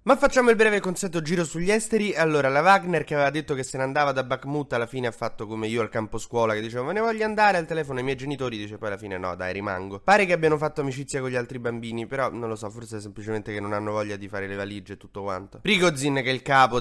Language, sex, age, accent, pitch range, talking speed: Italian, male, 20-39, native, 110-150 Hz, 280 wpm